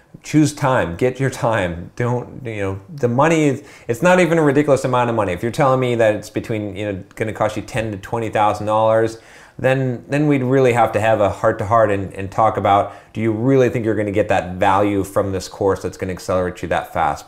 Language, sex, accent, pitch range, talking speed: English, male, American, 95-125 Hz, 250 wpm